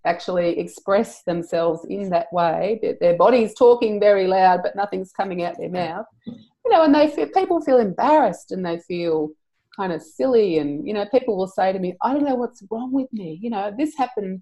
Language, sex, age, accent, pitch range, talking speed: English, female, 30-49, Australian, 175-235 Hz, 210 wpm